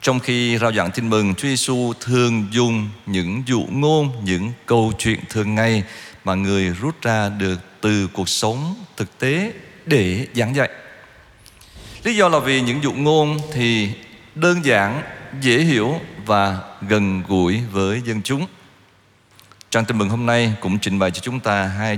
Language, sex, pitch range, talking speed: Vietnamese, male, 100-130 Hz, 165 wpm